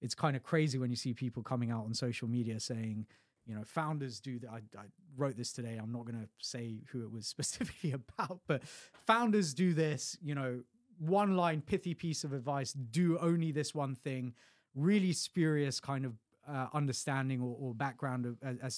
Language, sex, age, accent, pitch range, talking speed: English, male, 20-39, British, 125-165 Hz, 200 wpm